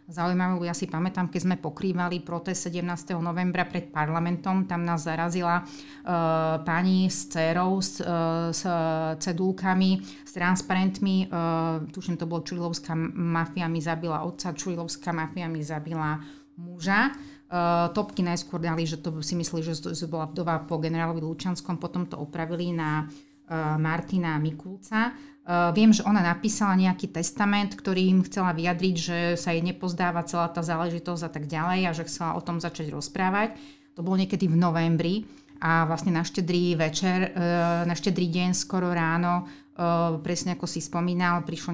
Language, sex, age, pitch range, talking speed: Slovak, female, 30-49, 160-180 Hz, 160 wpm